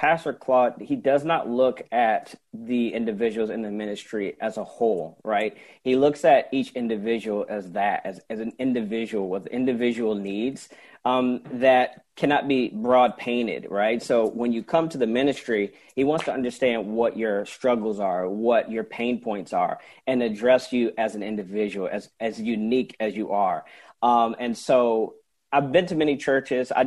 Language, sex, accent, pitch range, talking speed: English, male, American, 110-130 Hz, 175 wpm